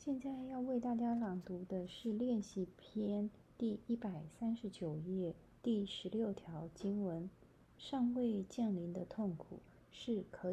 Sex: female